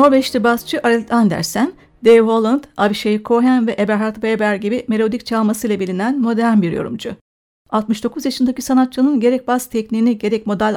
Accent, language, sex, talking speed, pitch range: native, Turkish, female, 145 wpm, 205-250 Hz